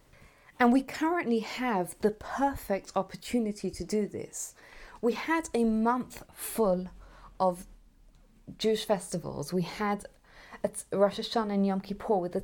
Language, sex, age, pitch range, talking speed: English, female, 30-49, 195-245 Hz, 130 wpm